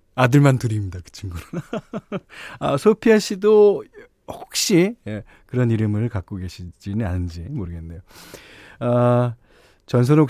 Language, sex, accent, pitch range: Korean, male, native, 100-150 Hz